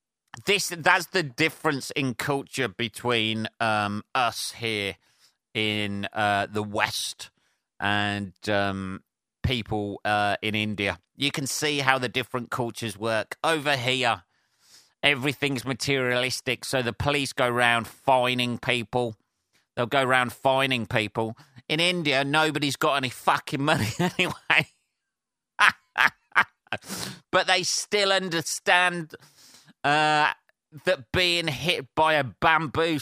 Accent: British